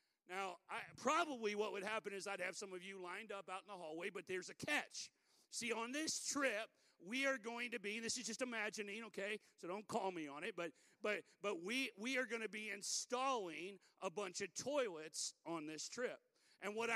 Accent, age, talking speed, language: American, 40-59, 220 wpm, English